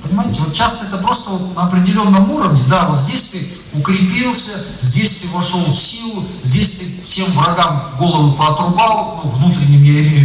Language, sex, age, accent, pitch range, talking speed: Russian, male, 40-59, native, 125-185 Hz, 165 wpm